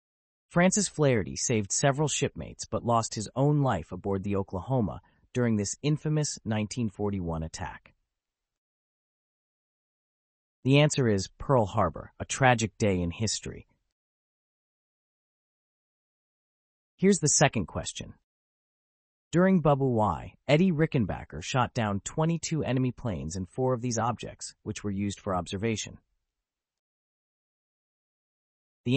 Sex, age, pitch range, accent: male, 30-49, 100-140 Hz, American